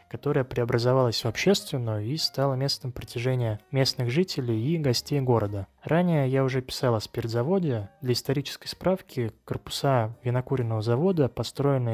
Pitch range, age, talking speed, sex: 120-145 Hz, 20-39, 130 wpm, male